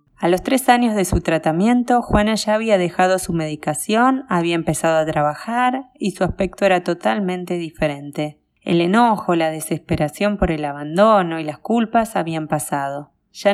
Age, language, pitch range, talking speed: 20-39, Spanish, 160-205 Hz, 160 wpm